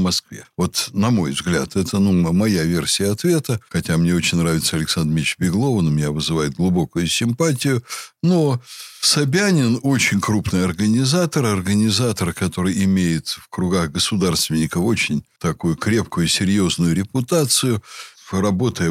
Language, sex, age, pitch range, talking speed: Russian, male, 60-79, 95-120 Hz, 130 wpm